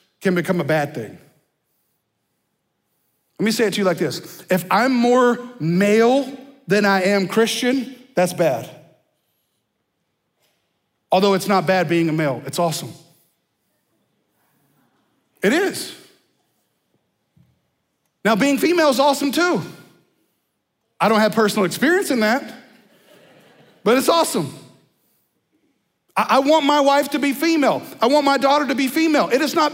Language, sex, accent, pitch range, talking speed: English, male, American, 200-300 Hz, 135 wpm